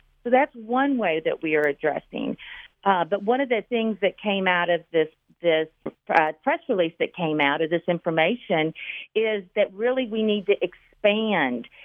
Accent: American